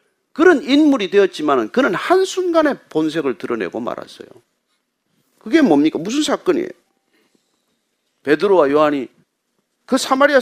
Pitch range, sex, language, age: 230-355 Hz, male, Korean, 40-59